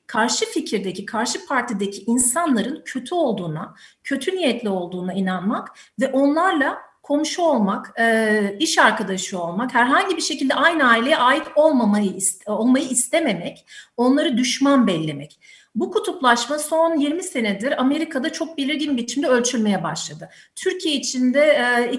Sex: female